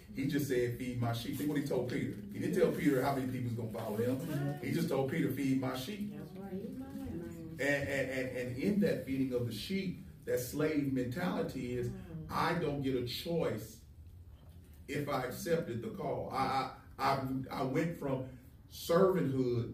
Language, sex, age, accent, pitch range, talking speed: English, male, 40-59, American, 125-150 Hz, 175 wpm